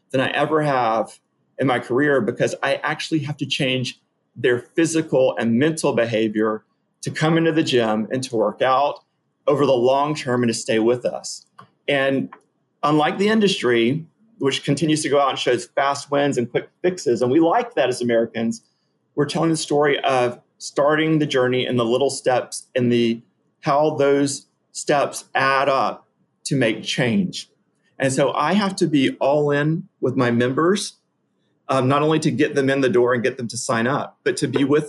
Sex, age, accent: male, 40-59, American